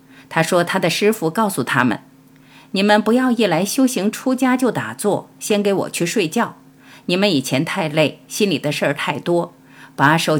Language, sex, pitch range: Chinese, female, 140-210 Hz